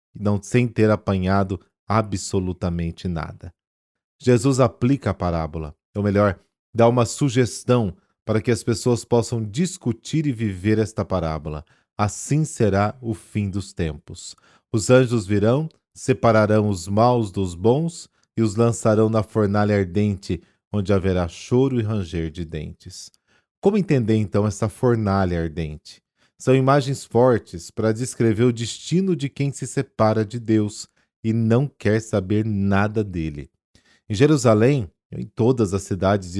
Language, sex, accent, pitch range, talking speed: Portuguese, male, Brazilian, 95-120 Hz, 140 wpm